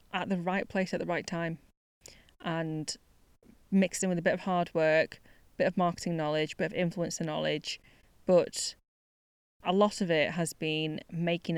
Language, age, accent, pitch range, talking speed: English, 20-39, British, 155-205 Hz, 180 wpm